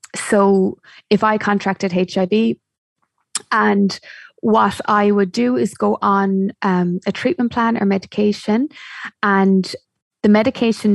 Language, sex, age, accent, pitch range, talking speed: English, female, 20-39, Irish, 180-210 Hz, 120 wpm